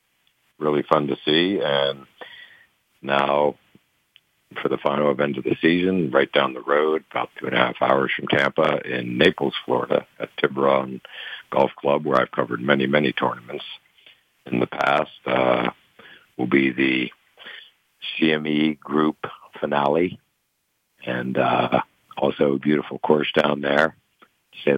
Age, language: 60-79, English